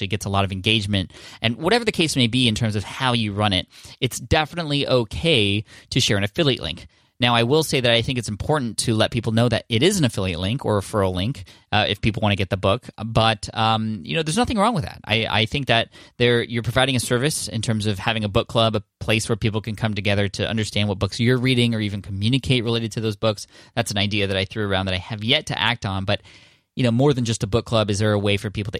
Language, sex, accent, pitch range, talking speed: English, male, American, 100-120 Hz, 275 wpm